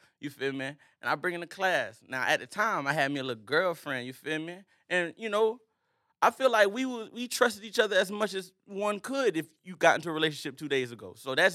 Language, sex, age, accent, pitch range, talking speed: English, male, 20-39, American, 165-255 Hz, 260 wpm